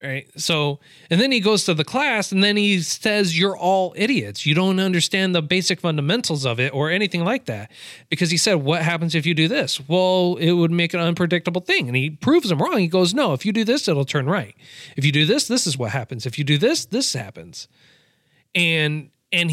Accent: American